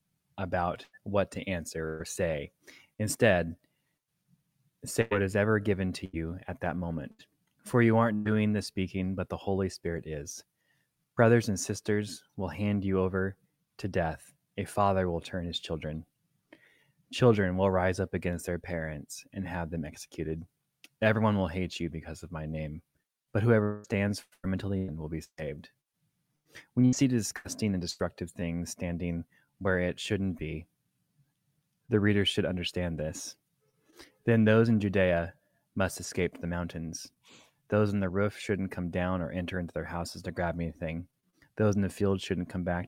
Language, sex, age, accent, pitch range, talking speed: English, male, 20-39, American, 85-105 Hz, 170 wpm